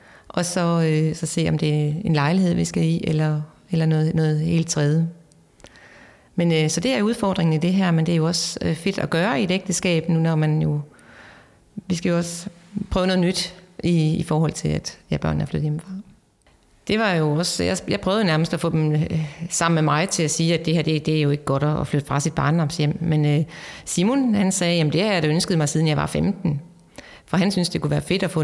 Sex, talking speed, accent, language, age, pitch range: female, 250 wpm, native, Danish, 30-49, 155-180 Hz